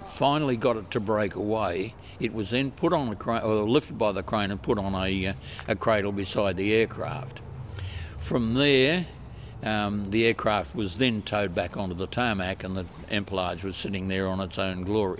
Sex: male